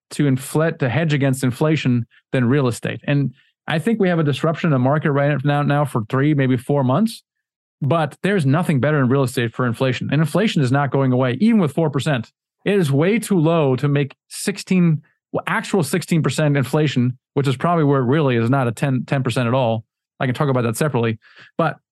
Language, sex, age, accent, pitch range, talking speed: English, male, 30-49, American, 135-170 Hz, 210 wpm